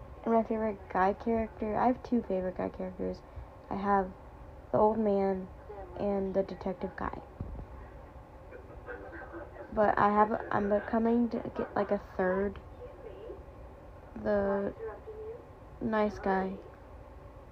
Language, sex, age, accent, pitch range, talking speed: English, female, 20-39, American, 195-235 Hz, 105 wpm